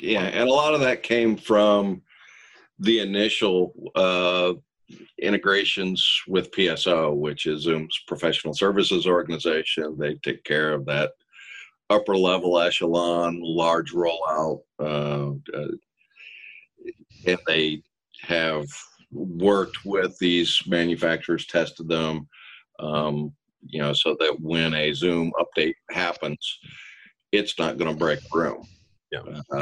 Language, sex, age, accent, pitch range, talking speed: English, male, 50-69, American, 75-90 Hz, 115 wpm